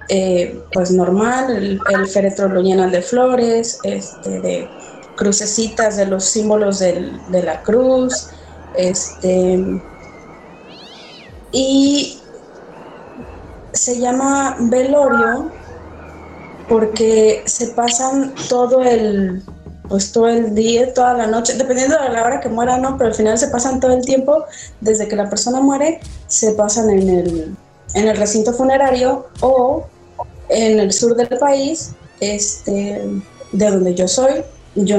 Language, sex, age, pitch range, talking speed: Spanish, female, 30-49, 195-255 Hz, 130 wpm